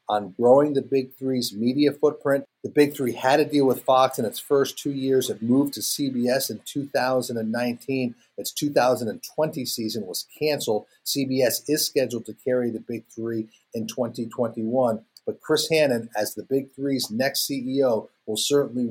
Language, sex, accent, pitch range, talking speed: English, male, American, 125-150 Hz, 165 wpm